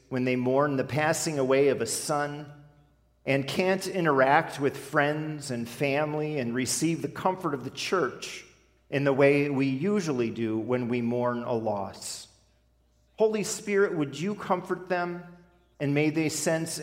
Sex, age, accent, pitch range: male, 40-59, American, 120-165 Hz